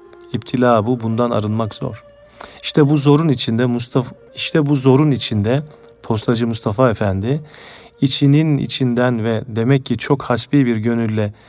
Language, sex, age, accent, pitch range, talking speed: Turkish, male, 40-59, native, 115-145 Hz, 135 wpm